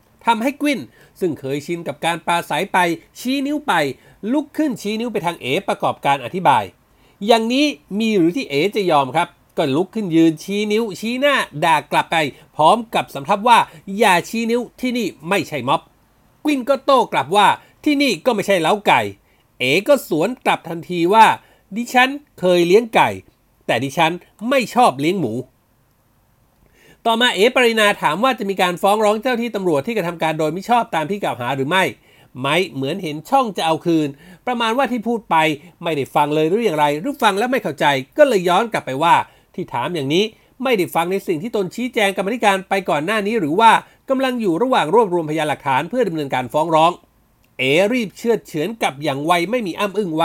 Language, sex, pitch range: Thai, male, 160-245 Hz